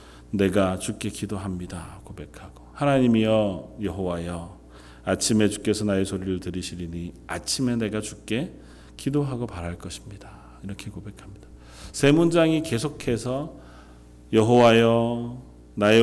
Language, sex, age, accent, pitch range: Korean, male, 40-59, native, 85-135 Hz